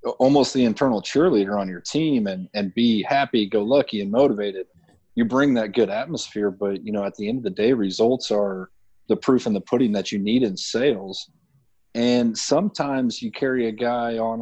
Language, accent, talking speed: English, American, 200 wpm